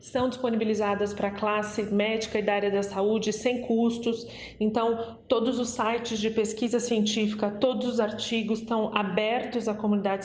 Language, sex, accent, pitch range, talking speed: Portuguese, female, Brazilian, 210-235 Hz, 160 wpm